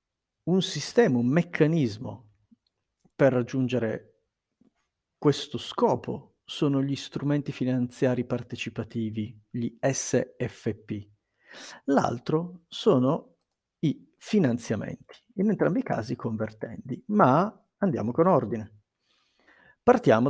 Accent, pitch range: native, 115-170 Hz